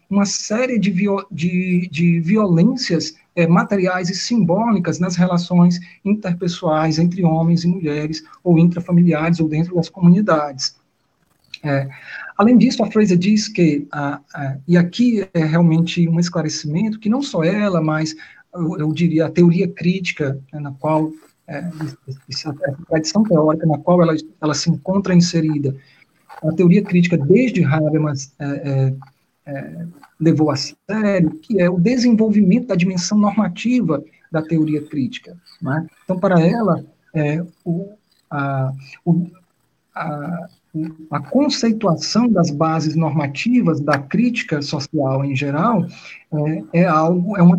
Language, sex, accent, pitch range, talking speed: Portuguese, male, Brazilian, 155-185 Hz, 135 wpm